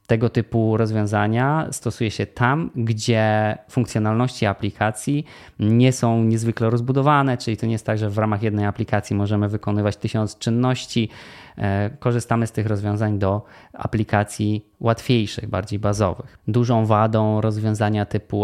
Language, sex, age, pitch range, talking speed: Polish, male, 20-39, 105-120 Hz, 130 wpm